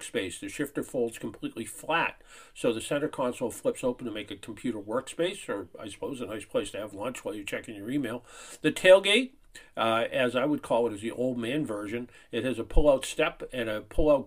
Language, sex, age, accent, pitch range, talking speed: English, male, 50-69, American, 105-130 Hz, 220 wpm